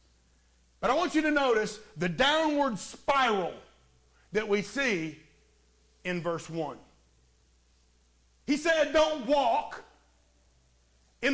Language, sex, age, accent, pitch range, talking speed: English, male, 50-69, American, 210-295 Hz, 105 wpm